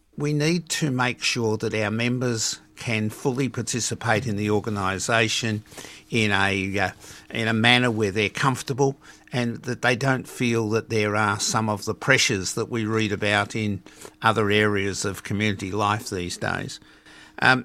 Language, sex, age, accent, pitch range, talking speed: English, male, 50-69, Australian, 105-125 Hz, 165 wpm